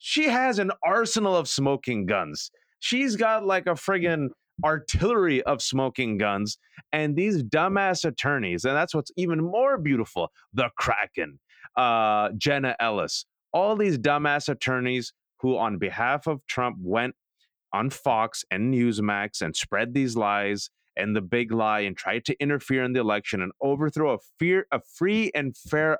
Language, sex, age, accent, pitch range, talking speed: English, male, 30-49, American, 125-180 Hz, 155 wpm